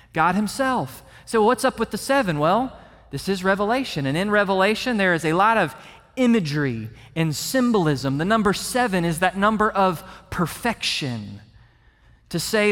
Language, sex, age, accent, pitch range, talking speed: English, male, 30-49, American, 160-240 Hz, 155 wpm